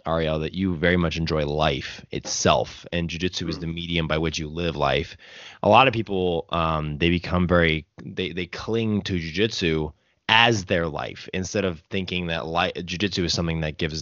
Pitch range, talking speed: 80-100 Hz, 190 wpm